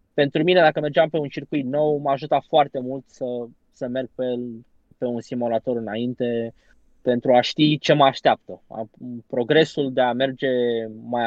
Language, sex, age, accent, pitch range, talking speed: Romanian, male, 20-39, native, 120-150 Hz, 170 wpm